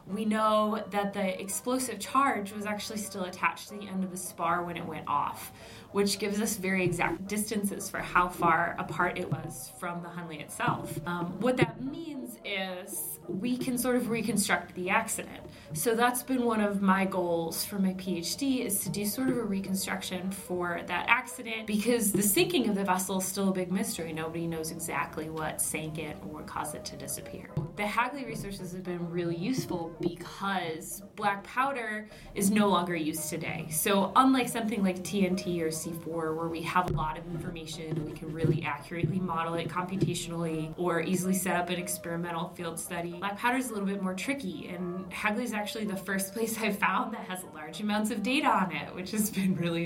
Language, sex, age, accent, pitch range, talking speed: English, female, 20-39, American, 170-210 Hz, 200 wpm